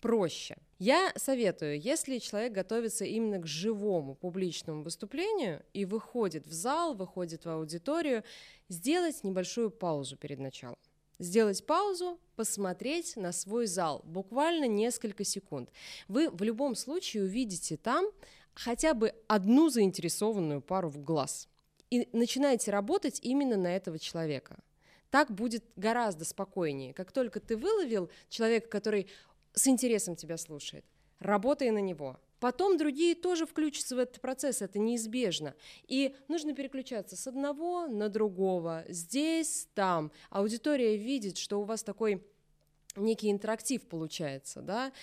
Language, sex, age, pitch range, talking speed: Russian, female, 20-39, 180-255 Hz, 130 wpm